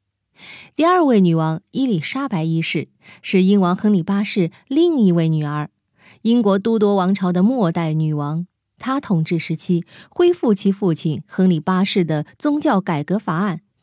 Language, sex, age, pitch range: Chinese, female, 20-39, 160-210 Hz